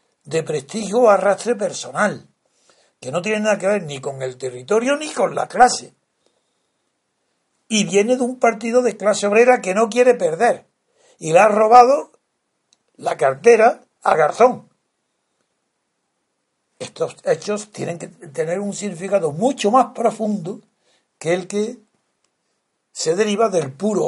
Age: 60-79